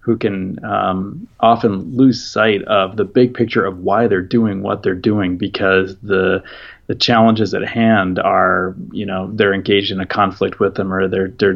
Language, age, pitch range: English, 30-49, 95-115 Hz